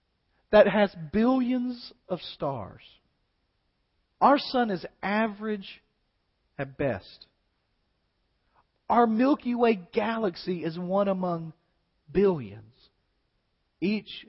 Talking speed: 85 wpm